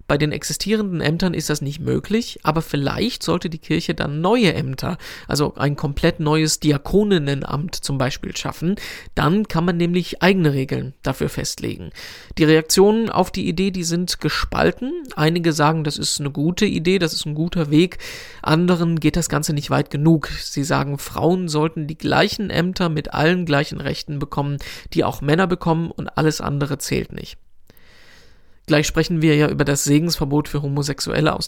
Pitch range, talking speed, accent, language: 150-175 Hz, 170 wpm, German, German